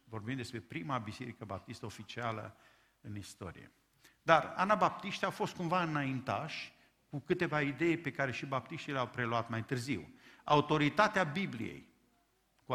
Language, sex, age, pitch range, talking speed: Romanian, male, 50-69, 125-180 Hz, 130 wpm